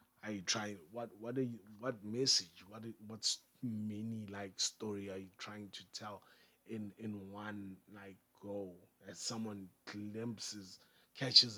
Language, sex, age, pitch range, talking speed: English, male, 30-49, 95-120 Hz, 145 wpm